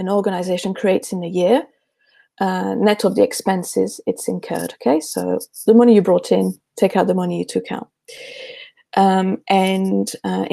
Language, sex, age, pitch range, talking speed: English, female, 30-49, 180-225 Hz, 170 wpm